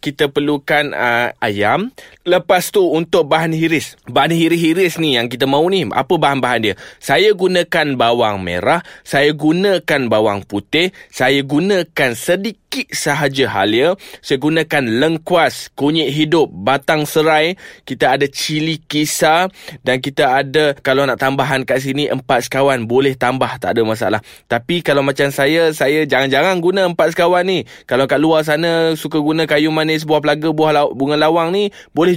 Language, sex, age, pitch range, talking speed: Malay, male, 20-39, 130-160 Hz, 155 wpm